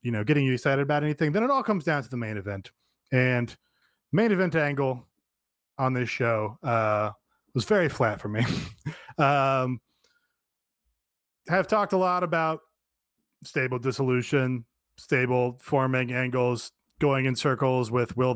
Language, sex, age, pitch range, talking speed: English, male, 30-49, 125-175 Hz, 145 wpm